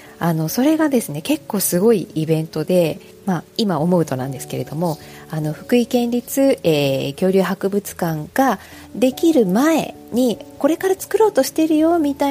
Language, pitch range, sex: Japanese, 150-240 Hz, female